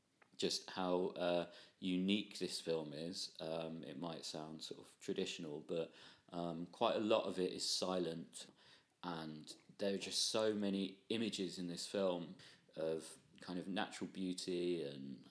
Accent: British